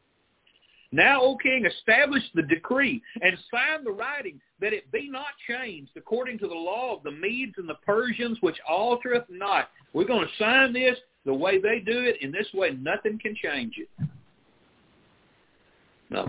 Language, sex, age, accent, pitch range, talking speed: English, male, 50-69, American, 140-230 Hz, 170 wpm